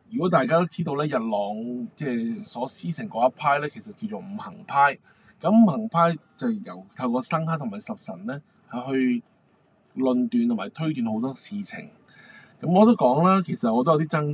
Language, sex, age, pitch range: Chinese, male, 20-39, 155-225 Hz